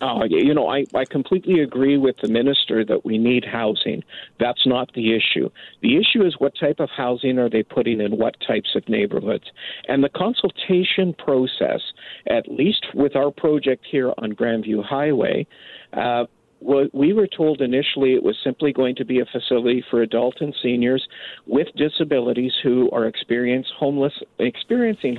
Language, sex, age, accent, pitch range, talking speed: English, male, 50-69, American, 120-145 Hz, 160 wpm